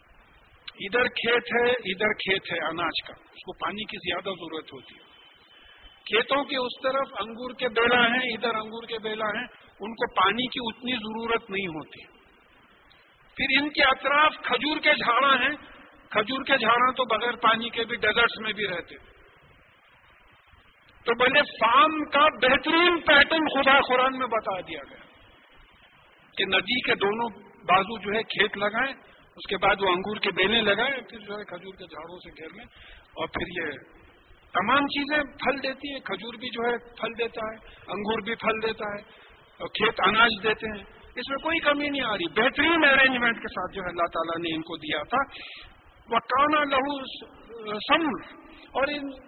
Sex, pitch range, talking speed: male, 210-270 Hz, 155 wpm